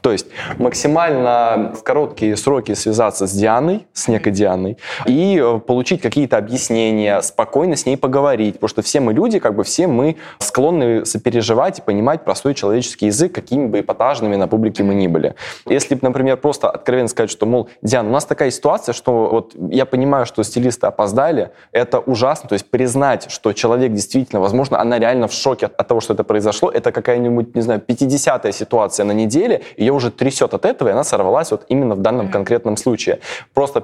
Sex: male